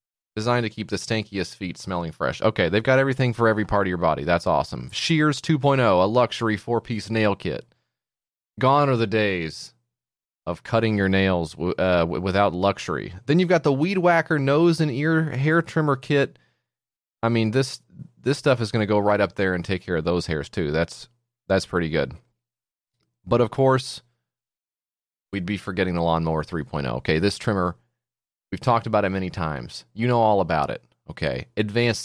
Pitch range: 90-125 Hz